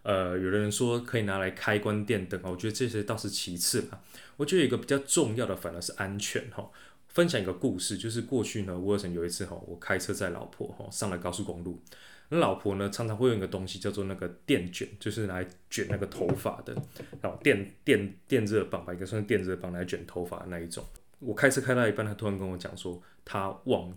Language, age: Chinese, 20-39